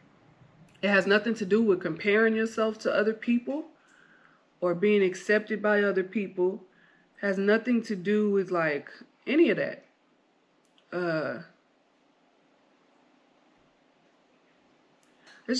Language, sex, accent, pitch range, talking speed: English, female, American, 195-240 Hz, 110 wpm